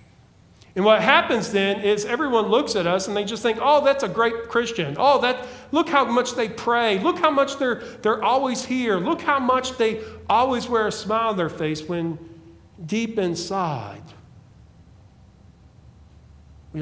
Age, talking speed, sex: 50-69, 170 wpm, male